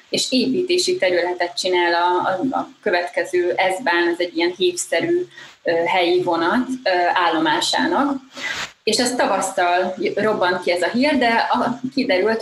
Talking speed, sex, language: 125 wpm, female, Hungarian